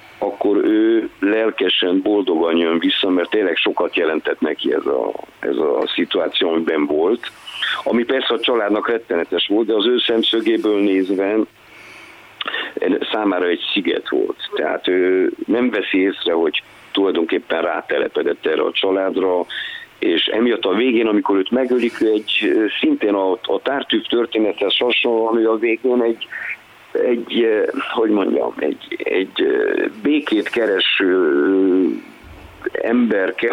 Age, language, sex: 50-69, Hungarian, male